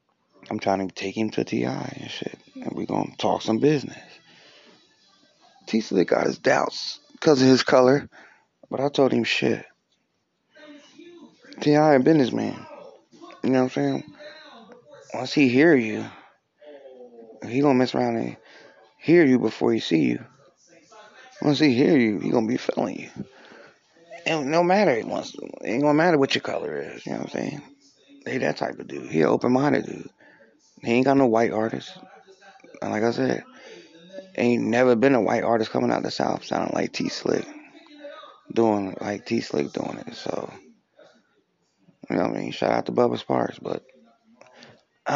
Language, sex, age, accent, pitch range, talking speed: English, male, 30-49, American, 110-150 Hz, 175 wpm